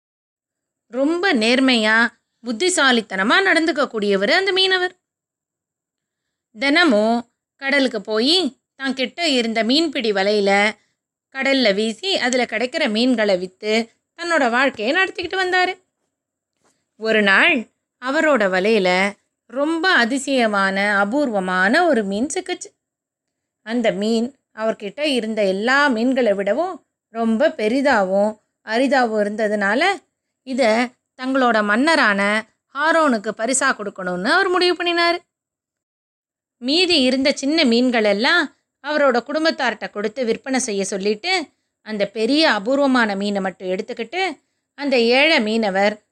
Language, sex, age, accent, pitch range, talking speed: Tamil, female, 20-39, native, 215-300 Hz, 95 wpm